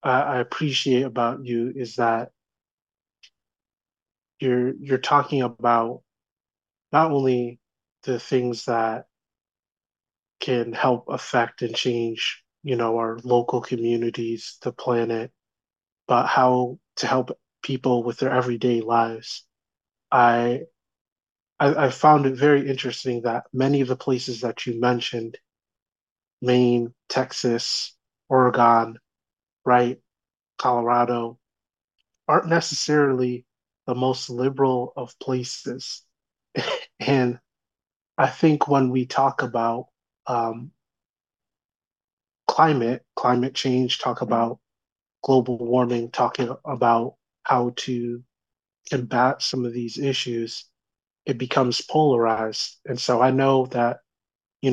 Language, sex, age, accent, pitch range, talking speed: English, male, 30-49, American, 120-130 Hz, 105 wpm